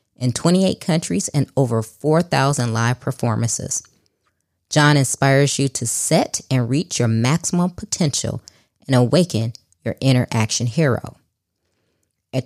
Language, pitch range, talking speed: English, 115-150 Hz, 120 wpm